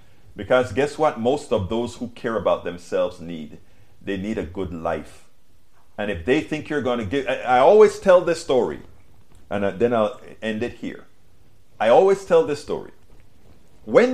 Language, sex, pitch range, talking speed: English, male, 100-125 Hz, 180 wpm